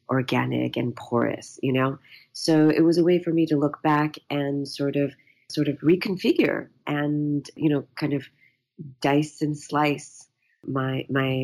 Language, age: English, 40-59